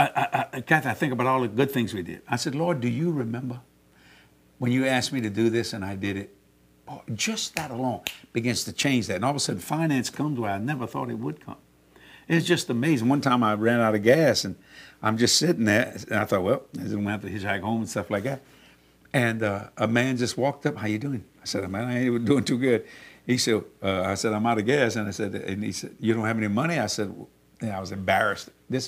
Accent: American